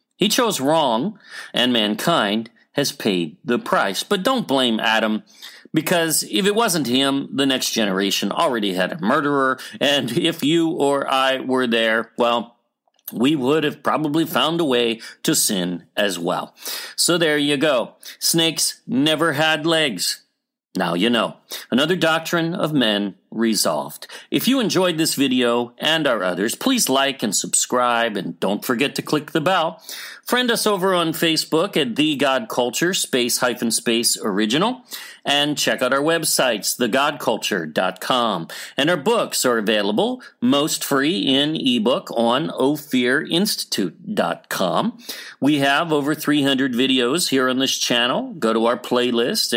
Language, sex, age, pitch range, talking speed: English, male, 40-59, 120-170 Hz, 150 wpm